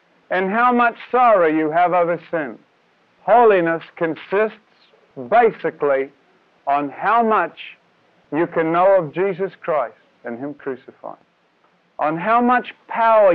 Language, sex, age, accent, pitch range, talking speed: English, male, 50-69, American, 175-255 Hz, 120 wpm